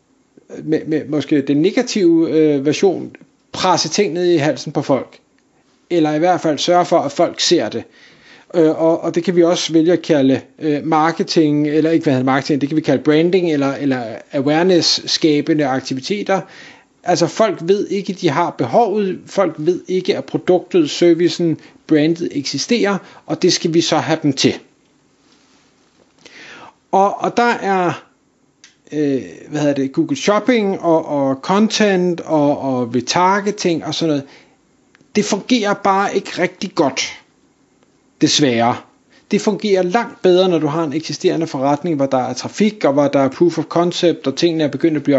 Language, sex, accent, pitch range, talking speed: Danish, male, native, 150-190 Hz, 165 wpm